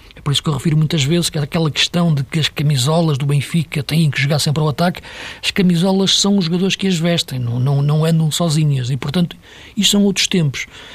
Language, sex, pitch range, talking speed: Portuguese, male, 135-175 Hz, 235 wpm